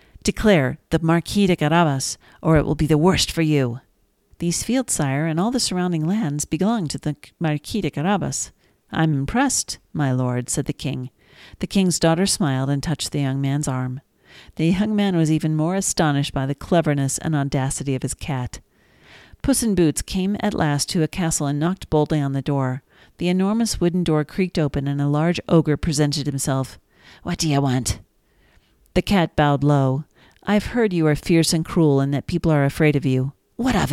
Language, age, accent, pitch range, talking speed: English, 50-69, American, 140-175 Hz, 195 wpm